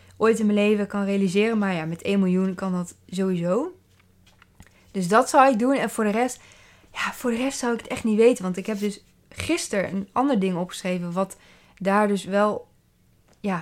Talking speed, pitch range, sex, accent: 205 wpm, 185-225 Hz, female, Dutch